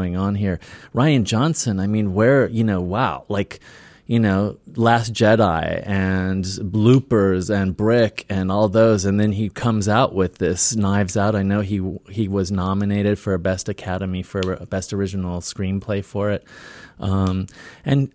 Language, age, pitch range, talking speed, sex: English, 30-49, 95-120 Hz, 160 wpm, male